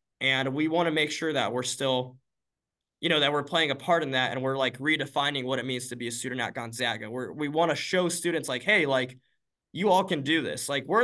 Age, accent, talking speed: 20-39, American, 255 wpm